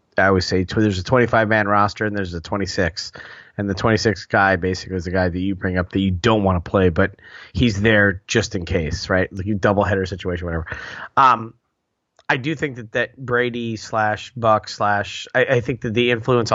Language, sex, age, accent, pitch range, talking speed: English, male, 30-49, American, 95-115 Hz, 215 wpm